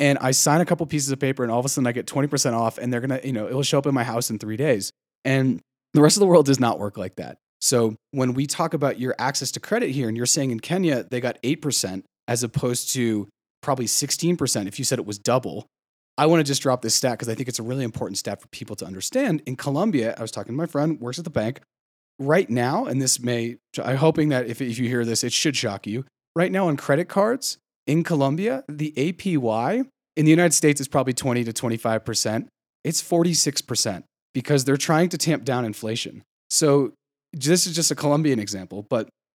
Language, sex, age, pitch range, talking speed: English, male, 30-49, 120-150 Hz, 235 wpm